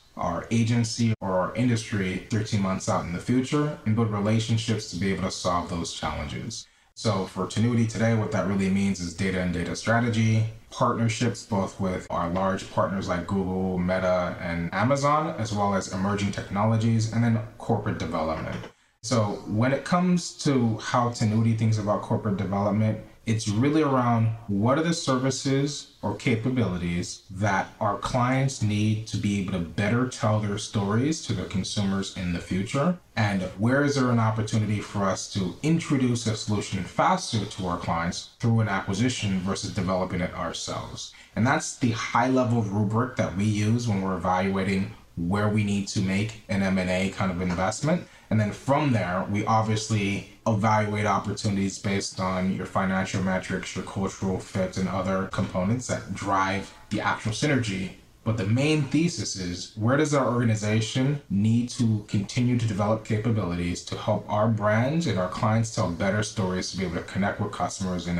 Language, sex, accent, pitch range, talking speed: English, male, American, 95-115 Hz, 170 wpm